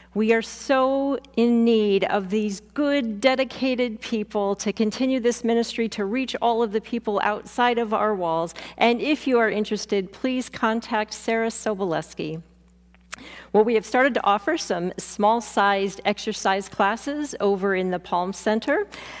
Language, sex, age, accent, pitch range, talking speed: English, female, 50-69, American, 205-255 Hz, 150 wpm